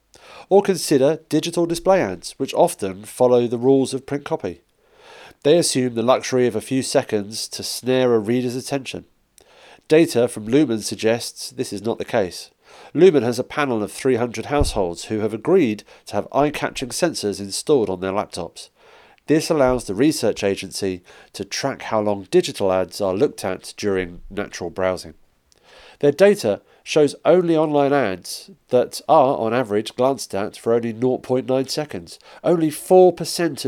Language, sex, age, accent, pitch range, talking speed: English, male, 40-59, British, 105-145 Hz, 155 wpm